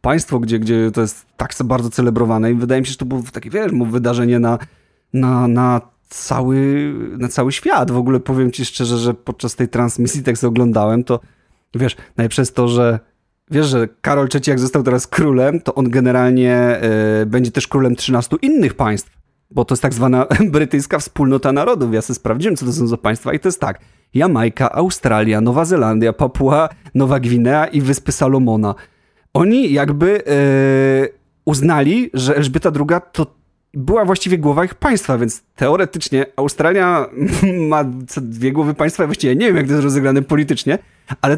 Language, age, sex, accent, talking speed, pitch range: Polish, 30-49, male, native, 175 wpm, 120-145 Hz